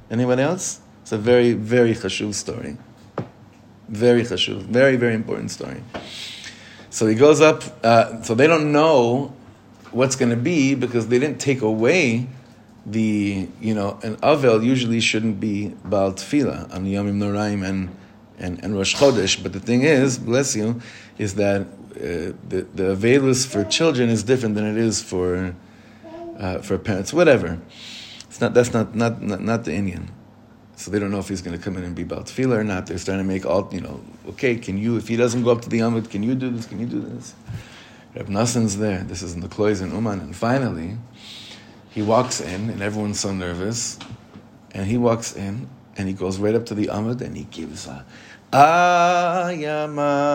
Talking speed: 190 wpm